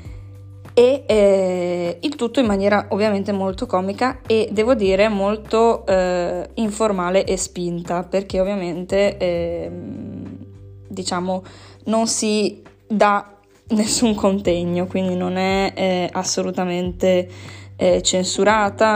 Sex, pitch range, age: female, 175-205 Hz, 20-39